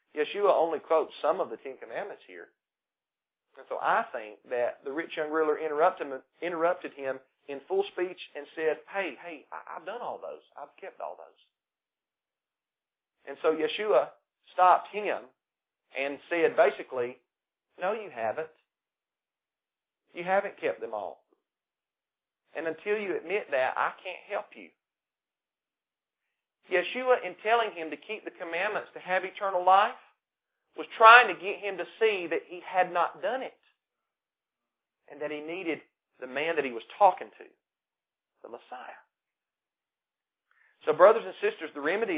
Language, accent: English, American